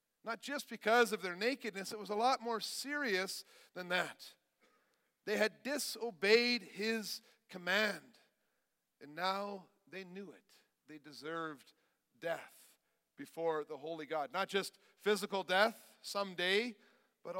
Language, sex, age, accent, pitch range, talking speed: English, male, 50-69, American, 155-220 Hz, 130 wpm